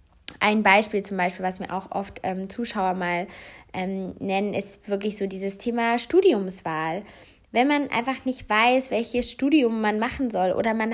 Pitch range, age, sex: 195-245 Hz, 20-39, female